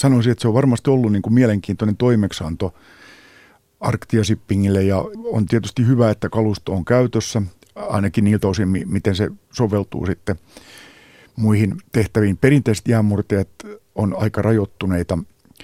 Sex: male